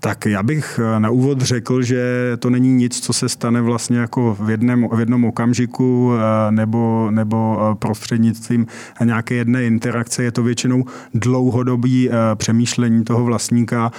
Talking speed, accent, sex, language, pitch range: 140 wpm, native, male, Czech, 115-125 Hz